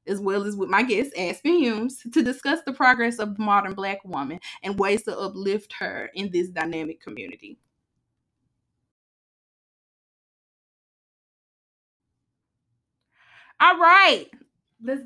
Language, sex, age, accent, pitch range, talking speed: English, female, 20-39, American, 195-255 Hz, 110 wpm